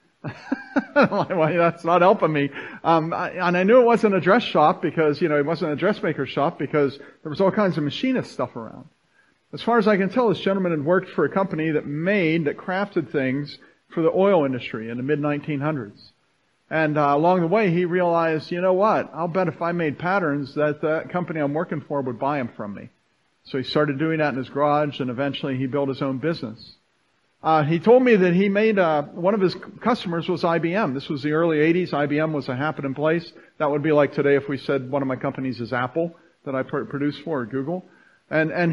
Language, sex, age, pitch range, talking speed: English, male, 50-69, 140-180 Hz, 225 wpm